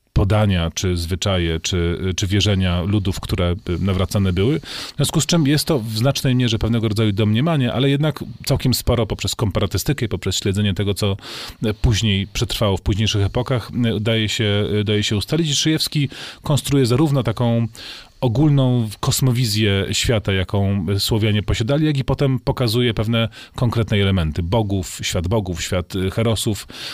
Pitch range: 100-130 Hz